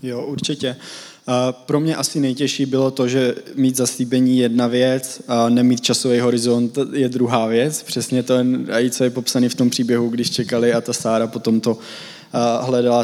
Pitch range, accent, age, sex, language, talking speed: 120-130 Hz, native, 20-39, male, Czech, 170 wpm